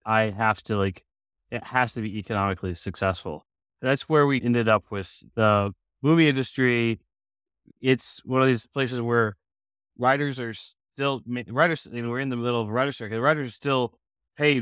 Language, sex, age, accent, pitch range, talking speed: English, male, 20-39, American, 100-120 Hz, 175 wpm